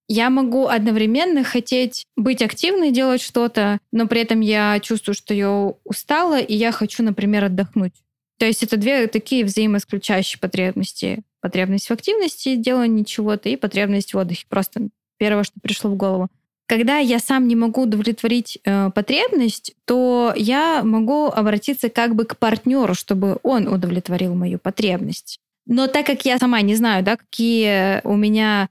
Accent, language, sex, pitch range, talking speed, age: native, Russian, female, 200-250 Hz, 155 wpm, 20-39